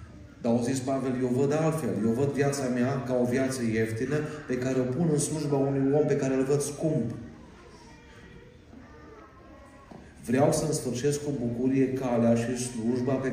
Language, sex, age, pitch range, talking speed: Romanian, male, 40-59, 120-145 Hz, 160 wpm